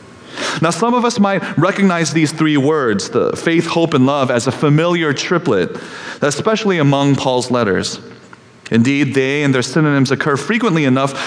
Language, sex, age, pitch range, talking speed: English, male, 30-49, 120-165 Hz, 160 wpm